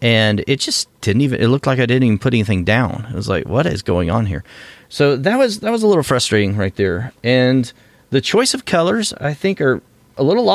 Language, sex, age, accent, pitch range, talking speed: English, male, 40-59, American, 100-130 Hz, 235 wpm